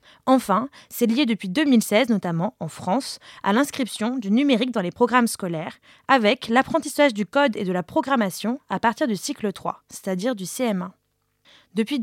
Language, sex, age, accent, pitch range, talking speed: French, female, 20-39, French, 205-270 Hz, 165 wpm